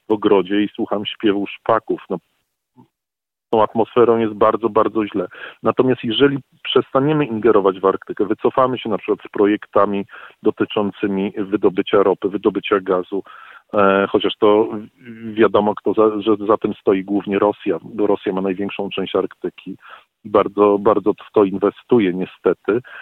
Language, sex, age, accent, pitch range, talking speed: Polish, male, 40-59, native, 100-125 Hz, 140 wpm